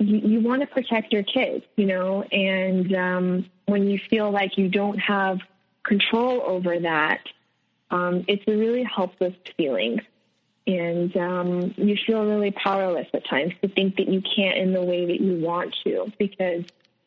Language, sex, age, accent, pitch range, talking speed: English, female, 20-39, American, 185-210 Hz, 165 wpm